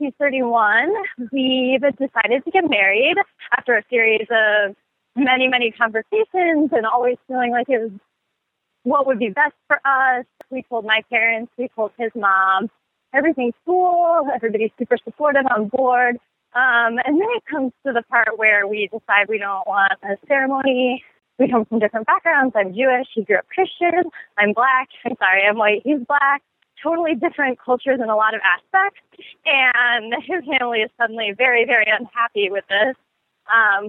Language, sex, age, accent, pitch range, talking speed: English, female, 20-39, American, 220-275 Hz, 165 wpm